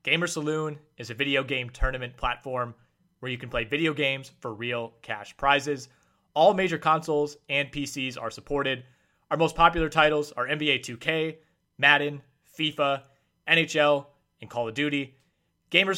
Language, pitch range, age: English, 120-145 Hz, 30-49